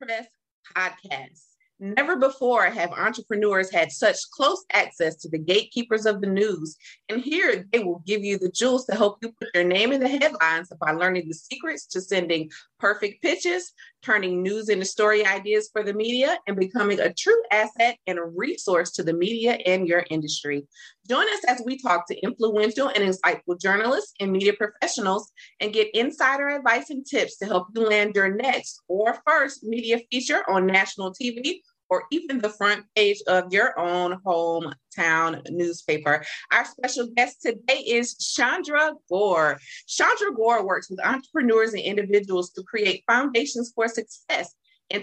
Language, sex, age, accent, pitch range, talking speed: English, female, 30-49, American, 185-240 Hz, 165 wpm